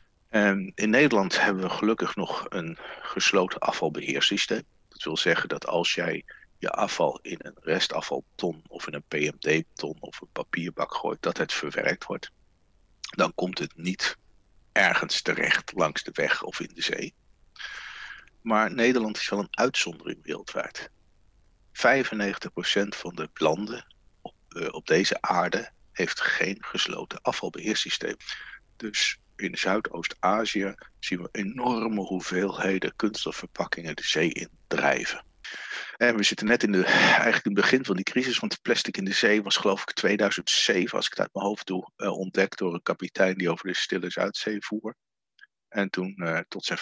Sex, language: male, Dutch